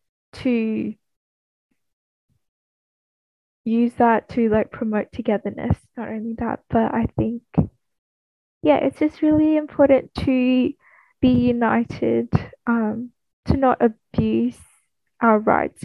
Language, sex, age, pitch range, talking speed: English, female, 10-29, 220-260 Hz, 100 wpm